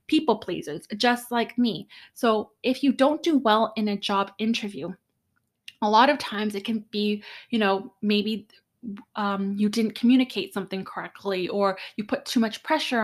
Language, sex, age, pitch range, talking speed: English, female, 20-39, 200-245 Hz, 170 wpm